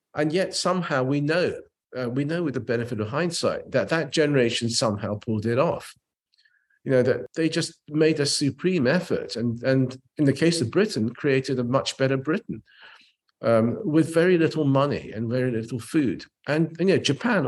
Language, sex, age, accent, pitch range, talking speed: English, male, 50-69, British, 120-155 Hz, 190 wpm